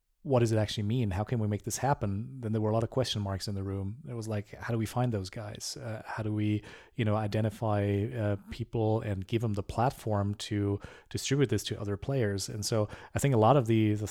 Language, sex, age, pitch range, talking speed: English, male, 30-49, 105-115 Hz, 255 wpm